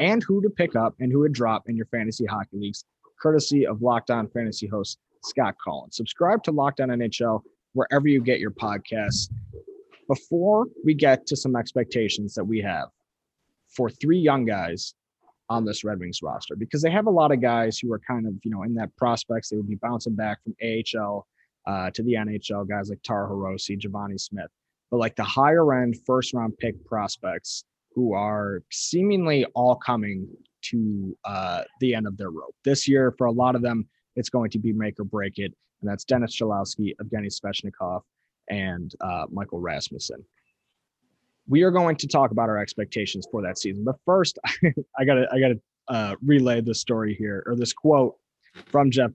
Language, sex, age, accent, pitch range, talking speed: English, male, 20-39, American, 105-130 Hz, 190 wpm